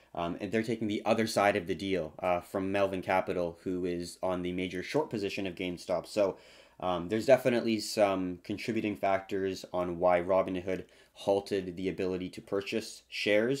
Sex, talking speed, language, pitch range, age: male, 170 wpm, English, 90-110 Hz, 20-39